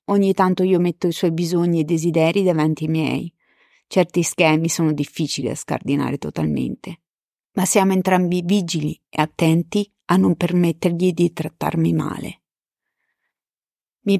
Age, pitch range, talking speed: 30-49, 160-185 Hz, 135 wpm